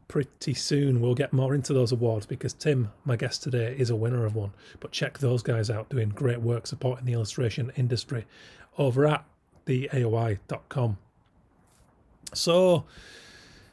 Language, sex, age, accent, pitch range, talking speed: English, male, 30-49, British, 120-140 Hz, 155 wpm